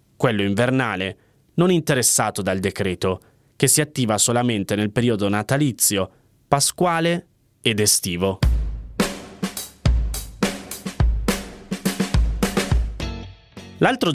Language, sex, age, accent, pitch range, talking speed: Italian, male, 30-49, native, 105-140 Hz, 70 wpm